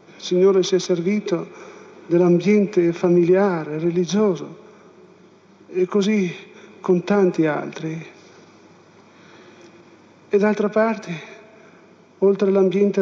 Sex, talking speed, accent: male, 85 wpm, native